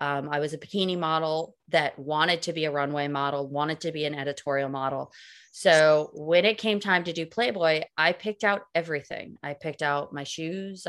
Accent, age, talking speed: American, 20-39, 200 wpm